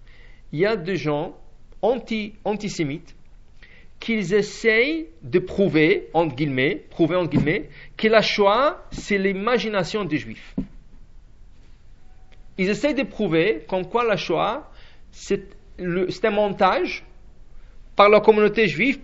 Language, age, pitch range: English, 50-69, 180-235 Hz